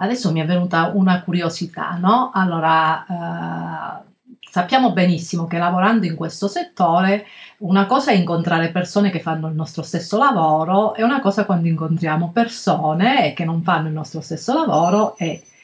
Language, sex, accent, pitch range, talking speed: Italian, female, native, 170-215 Hz, 155 wpm